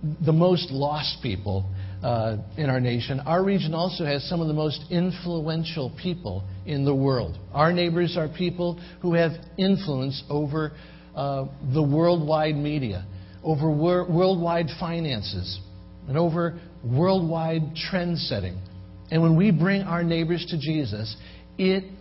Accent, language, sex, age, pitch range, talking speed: American, English, male, 60-79, 110-175 Hz, 140 wpm